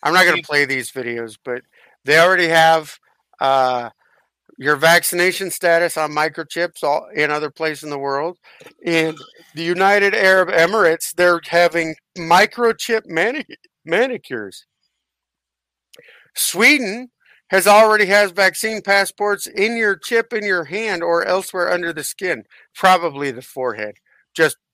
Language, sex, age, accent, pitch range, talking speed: English, male, 50-69, American, 150-190 Hz, 135 wpm